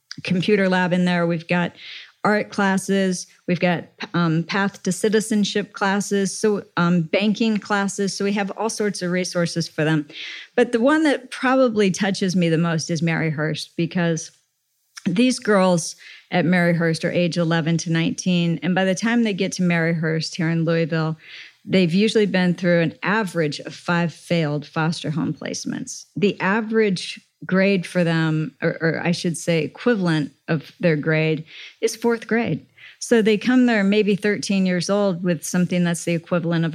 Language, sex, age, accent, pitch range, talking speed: English, female, 40-59, American, 165-200 Hz, 170 wpm